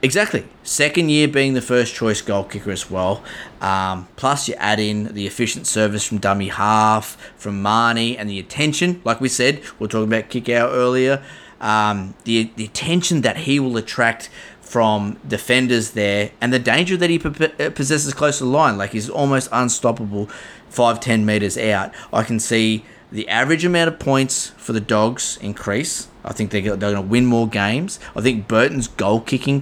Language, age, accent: English, 20-39, Australian